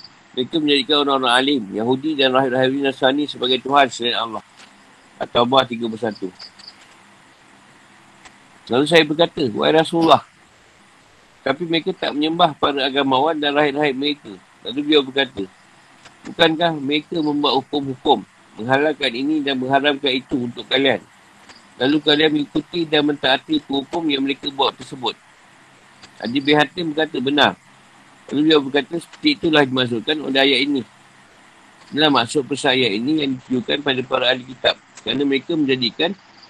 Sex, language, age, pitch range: male, Malay, 50-69, 130-150 Hz